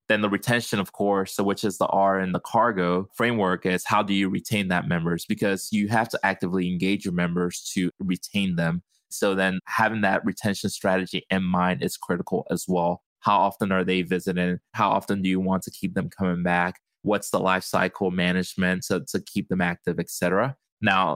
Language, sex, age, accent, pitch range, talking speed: English, male, 20-39, American, 90-100 Hz, 195 wpm